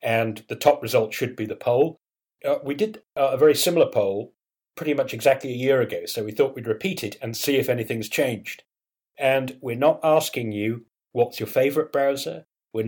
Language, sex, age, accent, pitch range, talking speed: English, male, 40-59, British, 115-145 Hz, 195 wpm